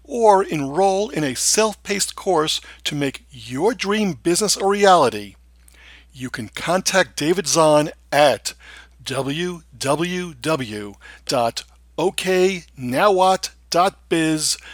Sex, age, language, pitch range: male, 50-69, English, 125-190 Hz